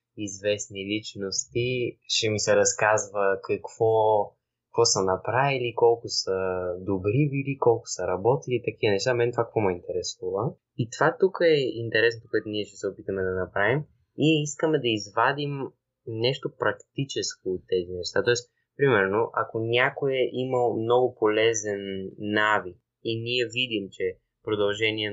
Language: Bulgarian